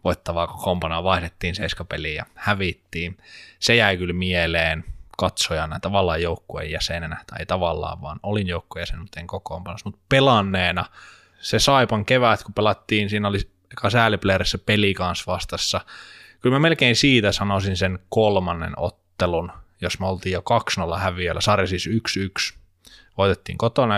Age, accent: 20-39, native